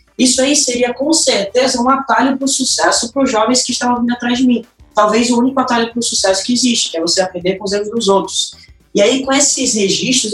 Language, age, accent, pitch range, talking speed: Portuguese, 10-29, Brazilian, 205-250 Hz, 230 wpm